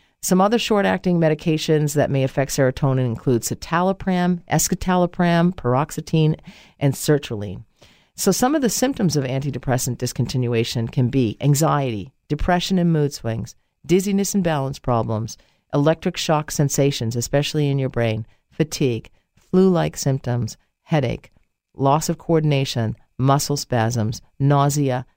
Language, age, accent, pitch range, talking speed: English, 50-69, American, 130-180 Hz, 120 wpm